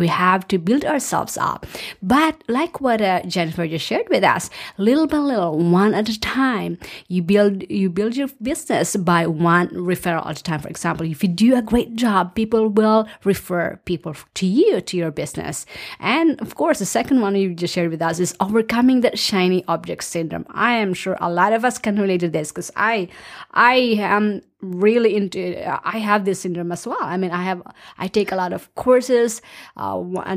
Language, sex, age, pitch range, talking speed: English, female, 30-49, 180-230 Hz, 205 wpm